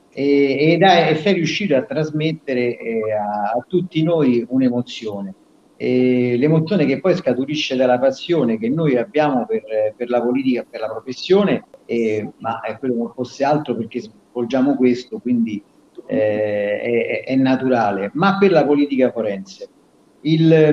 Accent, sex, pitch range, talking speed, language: native, male, 120-160 Hz, 150 wpm, Italian